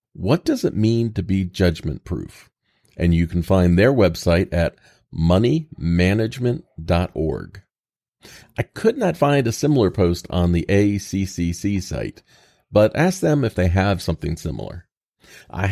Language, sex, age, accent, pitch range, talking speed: English, male, 40-59, American, 85-115 Hz, 135 wpm